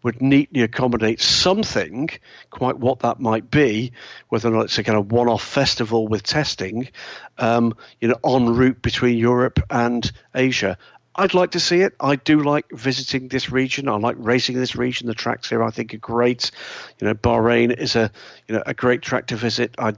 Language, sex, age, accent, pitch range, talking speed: English, male, 50-69, British, 115-135 Hz, 195 wpm